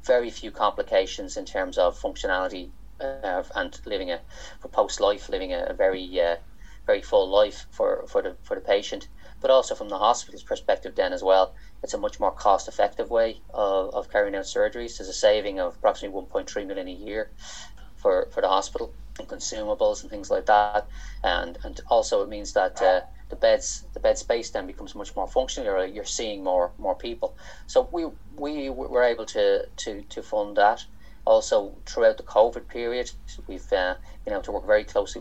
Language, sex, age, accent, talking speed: English, male, 30-49, Irish, 195 wpm